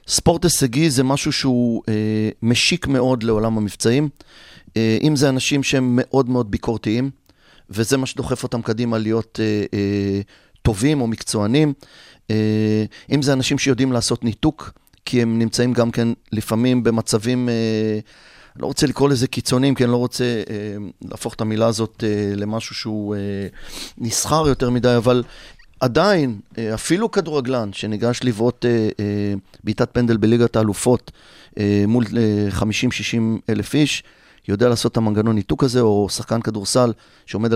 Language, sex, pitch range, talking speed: Hebrew, male, 110-130 Hz, 130 wpm